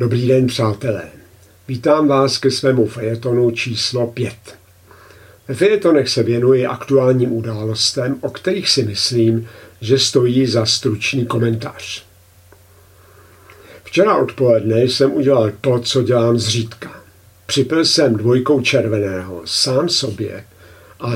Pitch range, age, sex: 100-135 Hz, 50-69, male